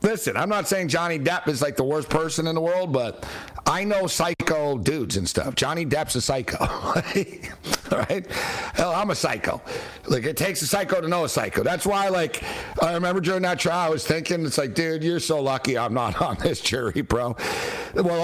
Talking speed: 205 wpm